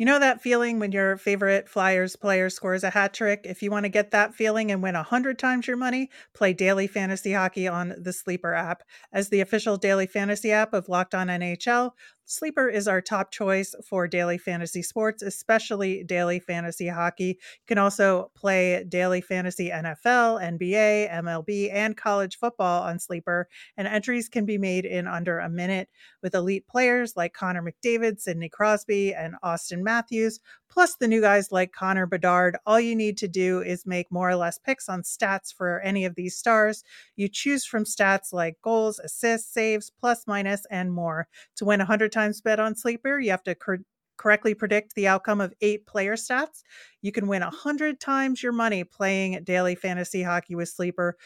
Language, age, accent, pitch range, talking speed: English, 30-49, American, 180-220 Hz, 185 wpm